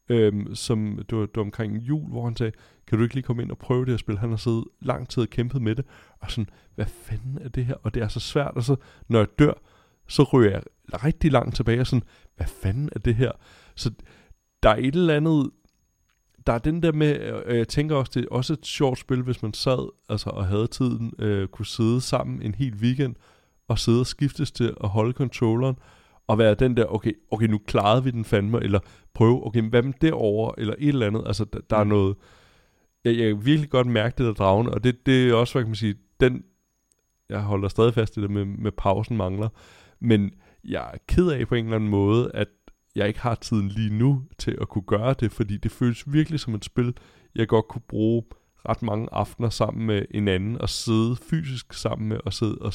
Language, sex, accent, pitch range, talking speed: Danish, male, native, 105-125 Hz, 230 wpm